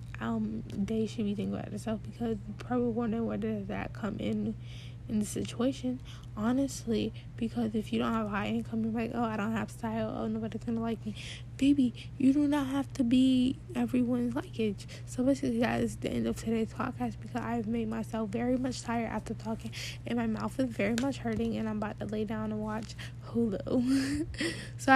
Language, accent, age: English, American, 10-29